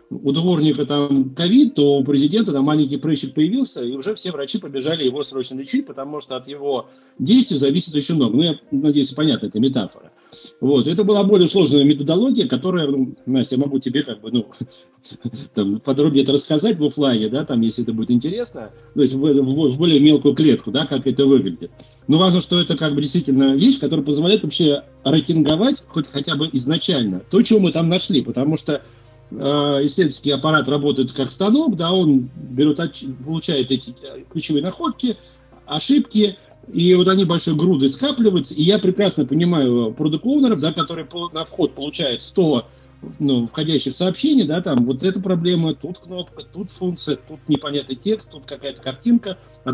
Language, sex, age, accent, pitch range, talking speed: Russian, male, 40-59, native, 135-180 Hz, 175 wpm